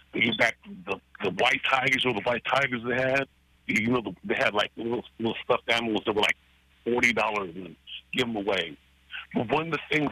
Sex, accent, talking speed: male, American, 220 wpm